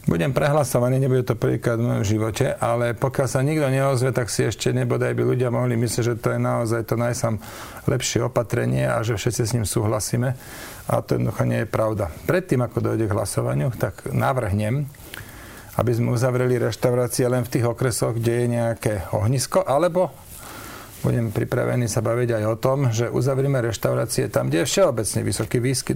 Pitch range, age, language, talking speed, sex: 110-130 Hz, 40-59, Slovak, 180 wpm, male